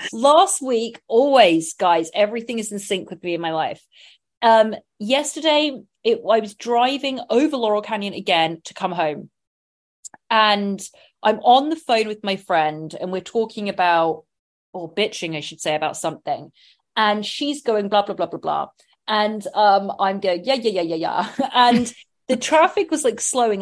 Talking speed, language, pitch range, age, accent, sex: 170 wpm, English, 175-235 Hz, 30-49, British, female